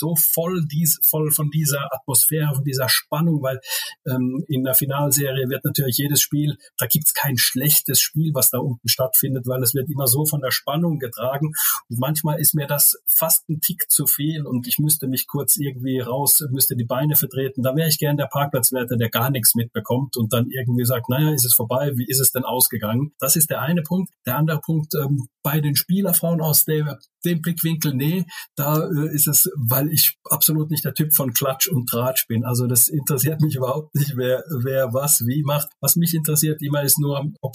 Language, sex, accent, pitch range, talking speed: German, male, German, 125-150 Hz, 210 wpm